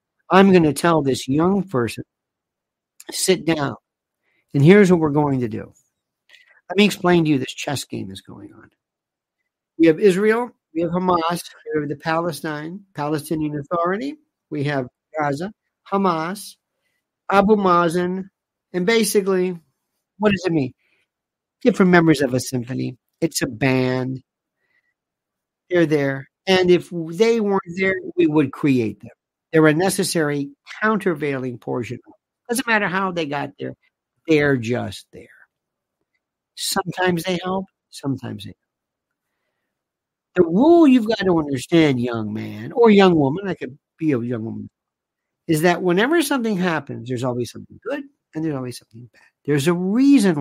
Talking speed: 150 wpm